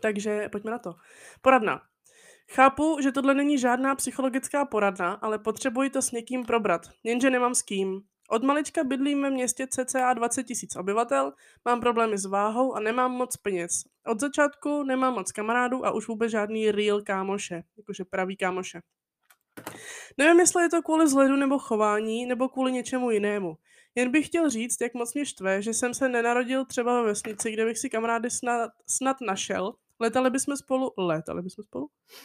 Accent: native